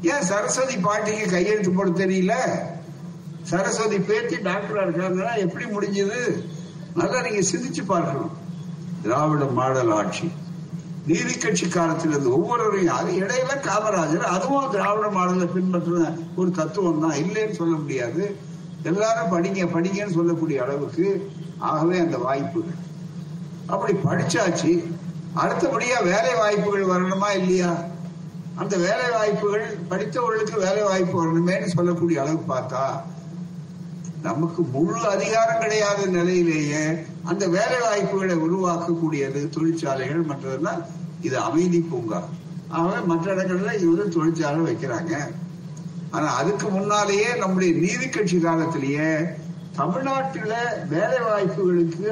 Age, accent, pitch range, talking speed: 60-79, native, 165-195 Hz, 100 wpm